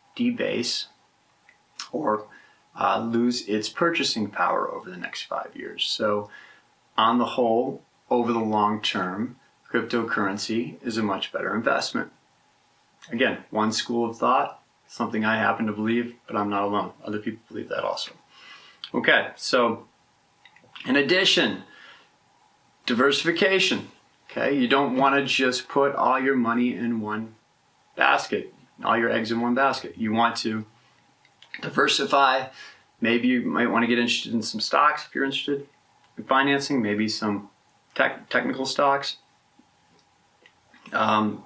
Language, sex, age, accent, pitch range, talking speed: English, male, 30-49, American, 110-130 Hz, 135 wpm